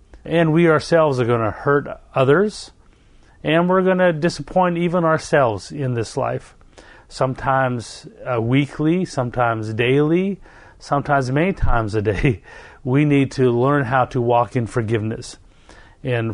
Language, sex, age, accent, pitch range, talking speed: English, male, 40-59, American, 120-145 Hz, 140 wpm